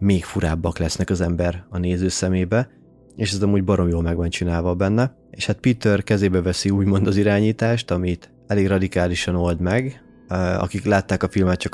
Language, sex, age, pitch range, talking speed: Hungarian, male, 30-49, 85-105 Hz, 180 wpm